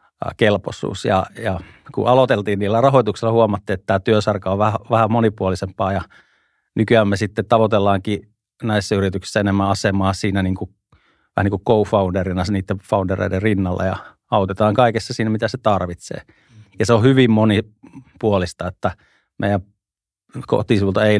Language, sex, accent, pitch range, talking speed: Finnish, male, native, 95-110 Hz, 135 wpm